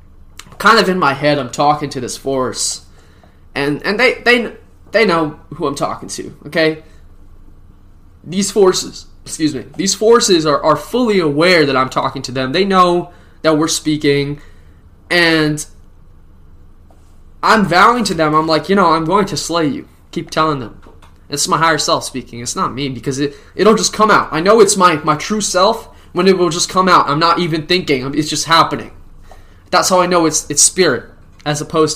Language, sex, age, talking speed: English, male, 20-39, 190 wpm